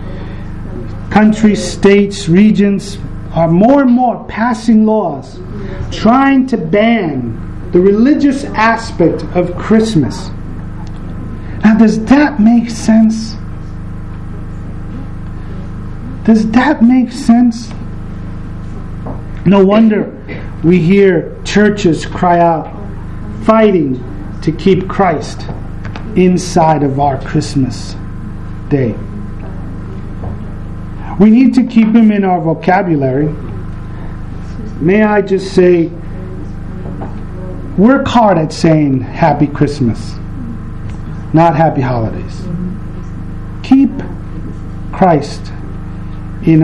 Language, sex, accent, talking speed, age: English, male, American, 85 wpm, 40-59